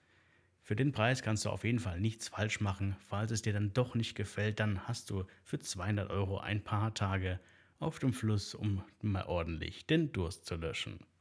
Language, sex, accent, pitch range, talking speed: German, male, German, 100-120 Hz, 200 wpm